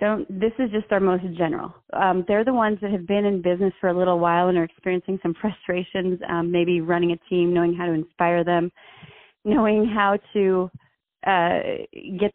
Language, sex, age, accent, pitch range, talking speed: English, female, 30-49, American, 170-195 Hz, 195 wpm